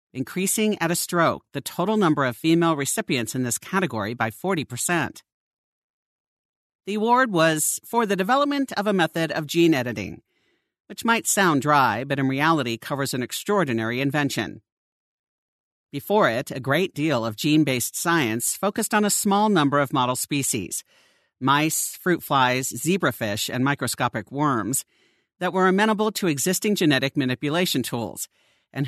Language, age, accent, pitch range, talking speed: English, 50-69, American, 130-185 Hz, 140 wpm